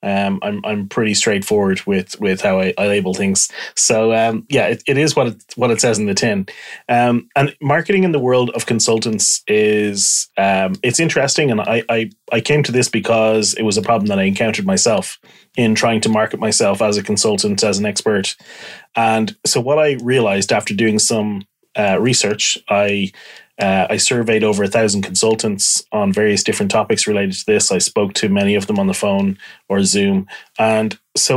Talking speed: 195 wpm